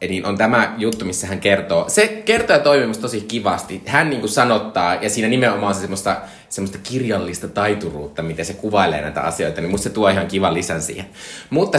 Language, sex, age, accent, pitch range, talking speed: Finnish, male, 20-39, native, 100-140 Hz, 195 wpm